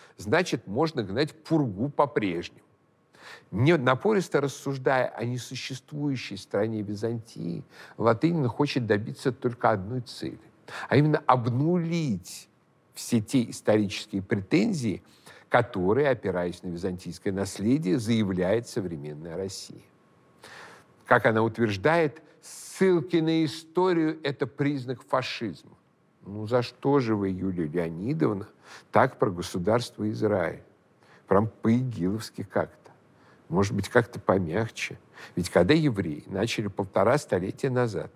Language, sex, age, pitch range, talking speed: Russian, male, 60-79, 105-145 Hz, 105 wpm